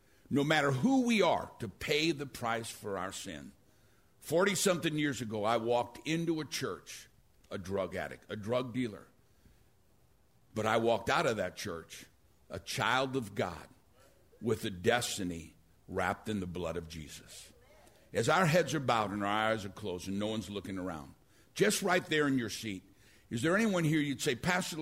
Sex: male